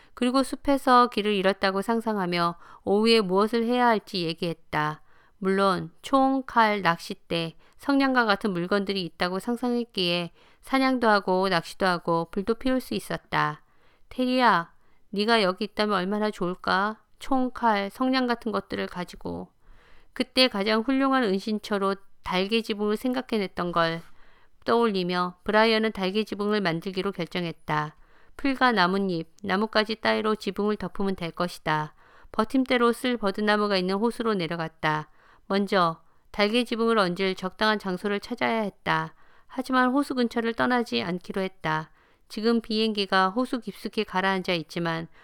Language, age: Korean, 50-69